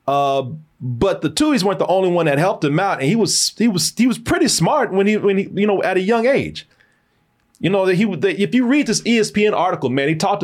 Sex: male